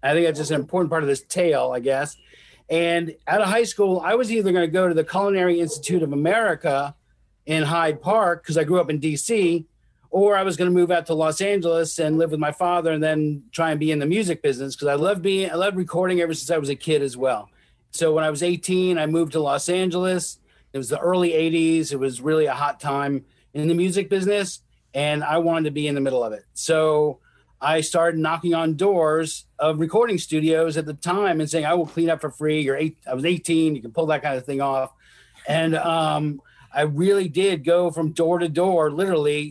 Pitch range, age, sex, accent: 150-175 Hz, 40-59, male, American